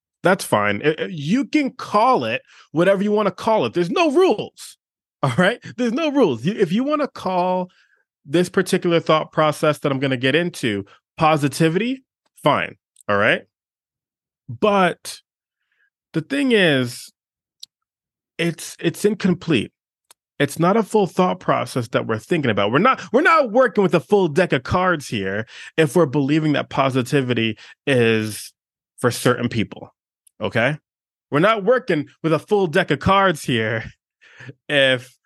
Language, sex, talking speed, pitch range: English, male, 150 wpm, 145-215 Hz